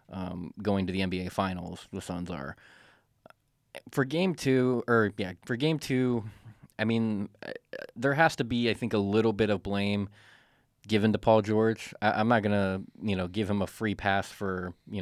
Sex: male